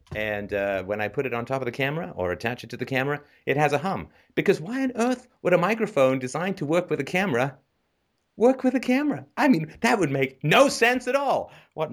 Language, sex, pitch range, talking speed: English, male, 90-145 Hz, 240 wpm